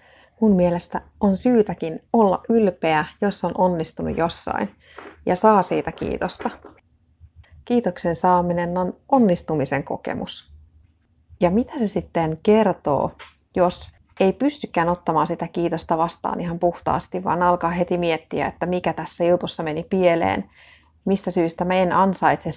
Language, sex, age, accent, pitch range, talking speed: Finnish, female, 30-49, native, 155-200 Hz, 130 wpm